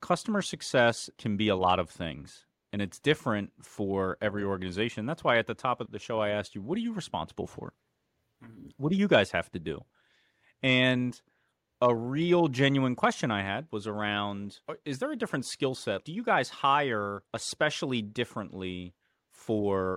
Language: English